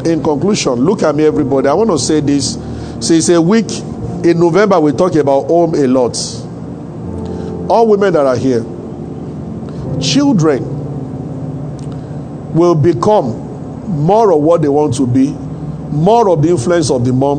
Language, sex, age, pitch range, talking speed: English, male, 50-69, 140-185 Hz, 150 wpm